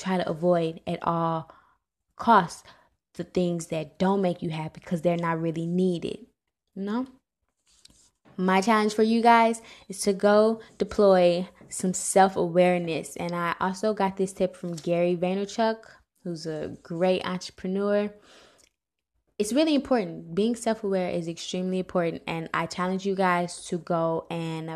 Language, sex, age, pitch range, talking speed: English, female, 10-29, 170-200 Hz, 145 wpm